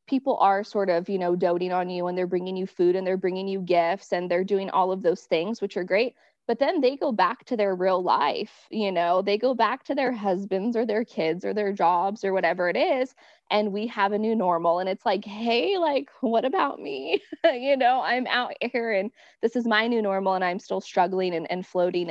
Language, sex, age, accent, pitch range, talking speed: English, female, 20-39, American, 185-260 Hz, 240 wpm